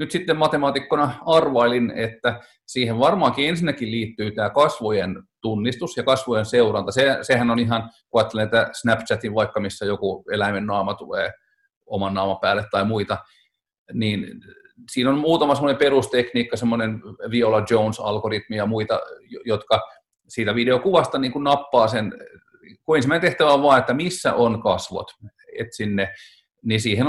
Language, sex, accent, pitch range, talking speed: Finnish, male, native, 105-140 Hz, 145 wpm